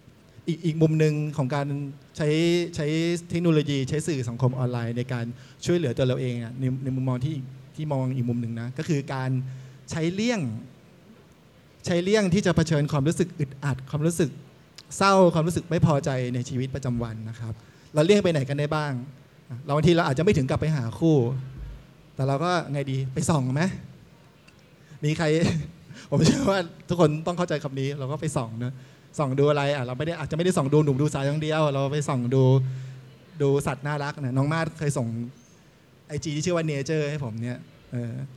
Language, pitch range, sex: Thai, 130-160 Hz, male